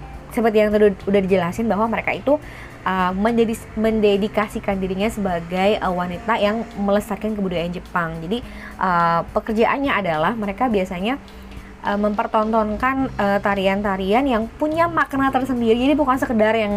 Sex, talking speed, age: female, 130 wpm, 20-39